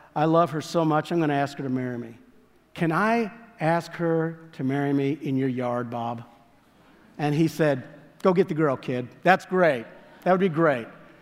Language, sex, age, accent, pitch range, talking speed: English, male, 50-69, American, 155-195 Hz, 200 wpm